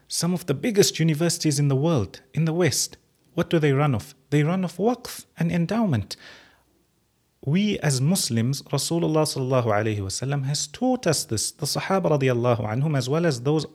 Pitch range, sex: 130-170 Hz, male